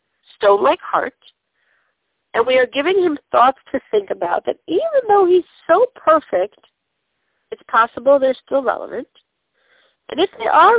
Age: 50-69